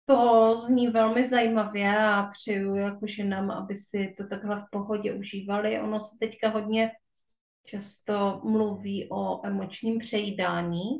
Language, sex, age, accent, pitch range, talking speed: Czech, female, 30-49, native, 205-245 Hz, 130 wpm